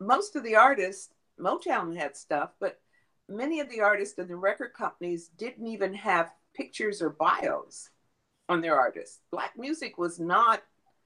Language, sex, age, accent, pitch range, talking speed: English, female, 50-69, American, 160-225 Hz, 155 wpm